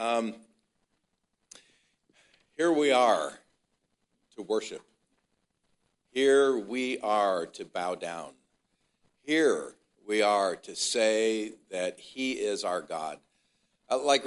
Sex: male